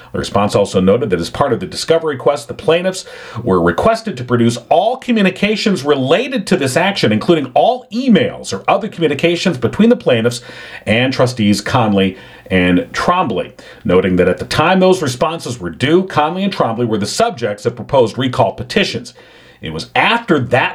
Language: English